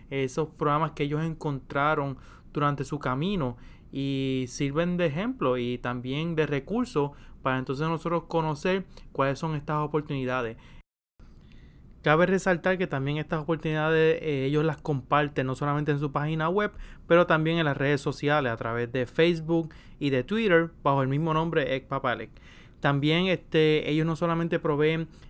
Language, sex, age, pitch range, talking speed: English, male, 30-49, 135-165 Hz, 150 wpm